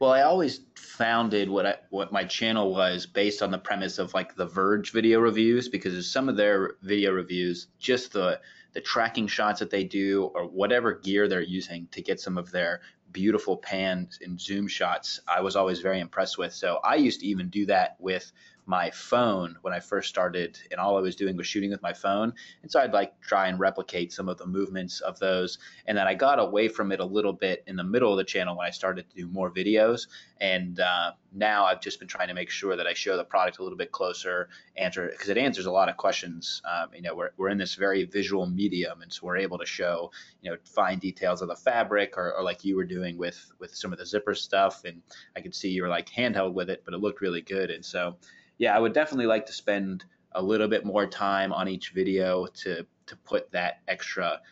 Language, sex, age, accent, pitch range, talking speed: English, male, 20-39, American, 90-105 Hz, 235 wpm